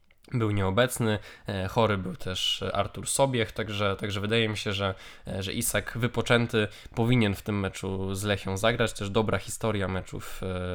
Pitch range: 100-120 Hz